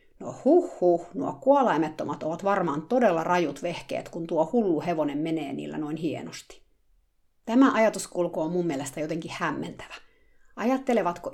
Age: 50-69